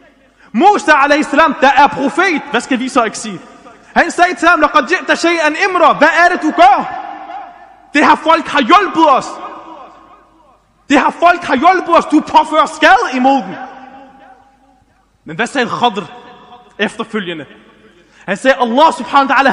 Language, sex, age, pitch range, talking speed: Danish, male, 20-39, 230-300 Hz, 155 wpm